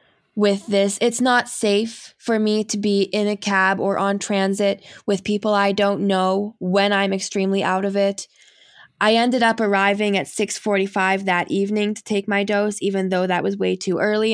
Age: 10-29